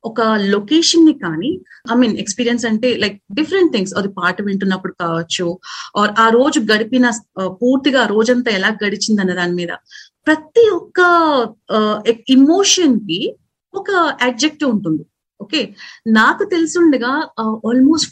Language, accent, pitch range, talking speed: Telugu, native, 190-280 Hz, 130 wpm